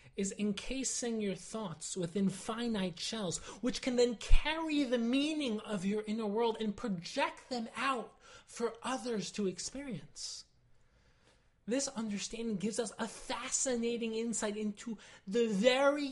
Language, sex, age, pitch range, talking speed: English, male, 30-49, 195-250 Hz, 130 wpm